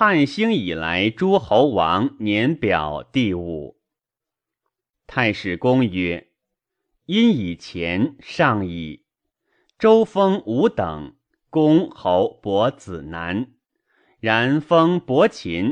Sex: male